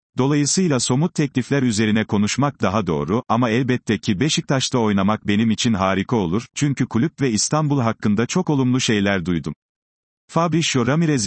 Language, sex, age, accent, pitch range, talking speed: Turkish, male, 40-59, native, 100-130 Hz, 145 wpm